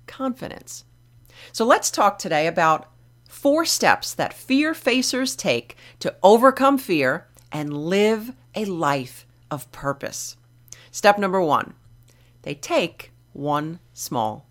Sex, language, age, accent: female, English, 40-59, American